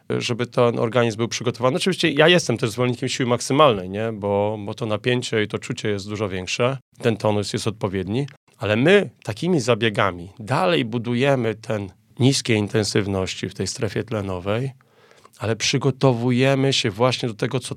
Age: 30-49